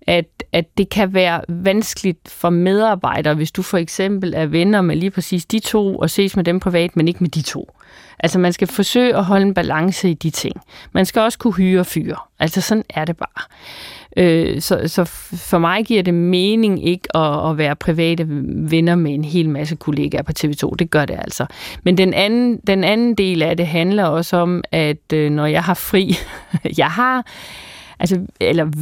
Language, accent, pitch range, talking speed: Danish, native, 165-205 Hz, 200 wpm